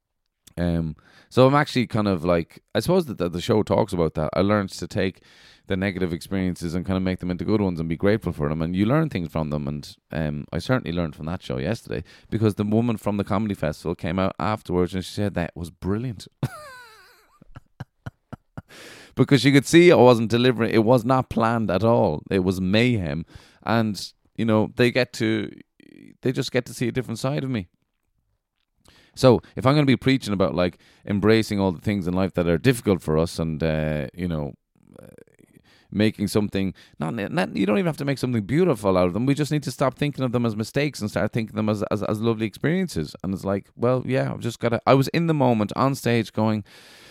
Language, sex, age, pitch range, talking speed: English, male, 30-49, 90-125 Hz, 225 wpm